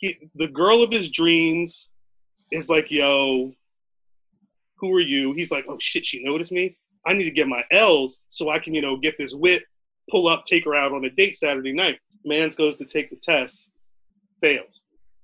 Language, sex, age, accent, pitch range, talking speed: English, male, 30-49, American, 140-190 Hz, 195 wpm